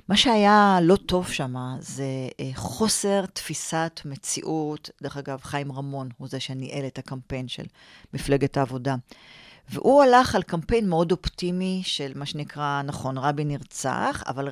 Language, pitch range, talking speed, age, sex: Hebrew, 140-195 Hz, 140 wpm, 40-59, female